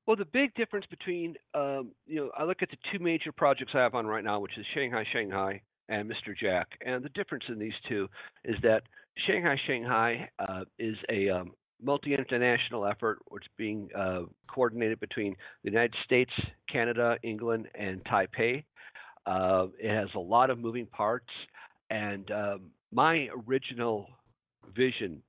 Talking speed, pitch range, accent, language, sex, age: 165 wpm, 105-130 Hz, American, English, male, 50-69